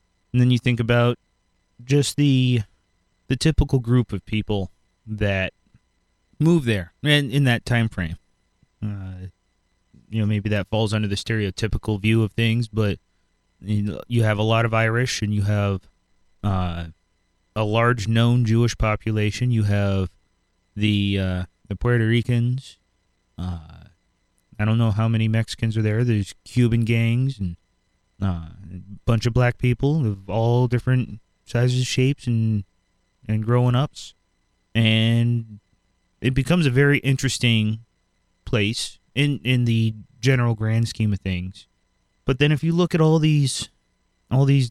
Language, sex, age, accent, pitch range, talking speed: English, male, 30-49, American, 100-120 Hz, 150 wpm